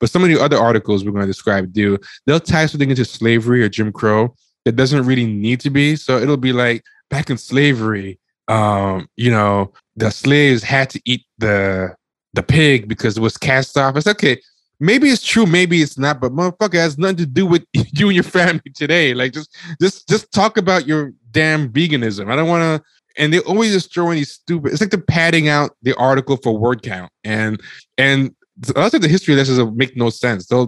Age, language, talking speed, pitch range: 20-39, English, 215 wpm, 115-150 Hz